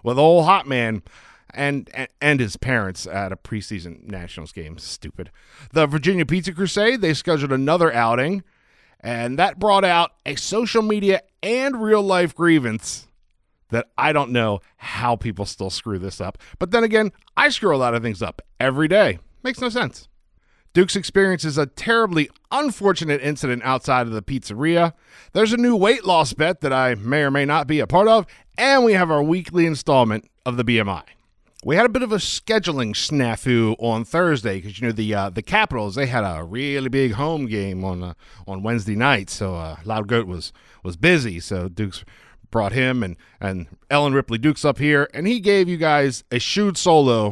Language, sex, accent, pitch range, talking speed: English, male, American, 110-170 Hz, 190 wpm